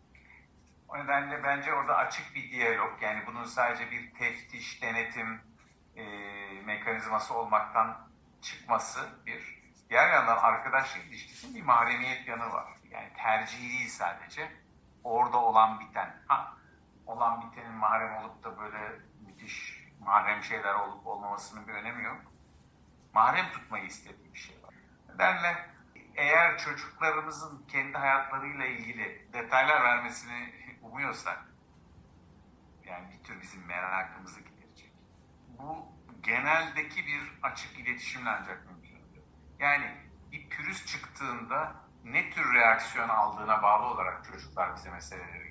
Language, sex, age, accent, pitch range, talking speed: Turkish, male, 50-69, native, 95-130 Hz, 115 wpm